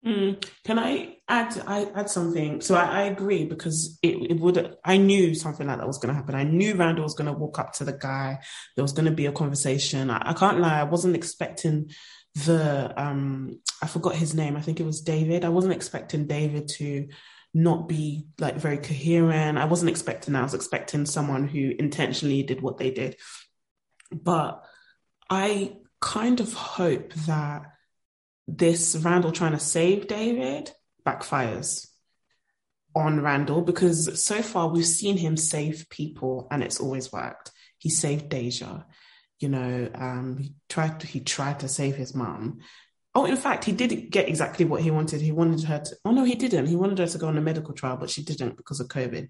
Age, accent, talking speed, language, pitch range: 20-39, British, 190 wpm, English, 145-175 Hz